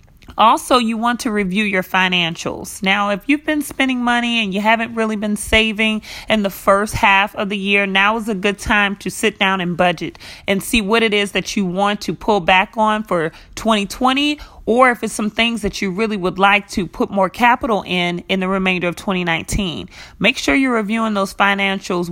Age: 30-49